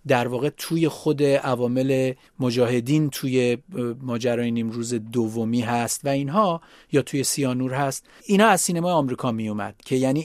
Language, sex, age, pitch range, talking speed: Persian, male, 30-49, 120-150 Hz, 140 wpm